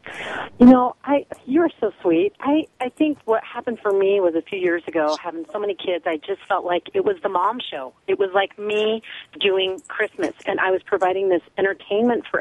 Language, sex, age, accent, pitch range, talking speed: English, female, 30-49, American, 175-225 Hz, 215 wpm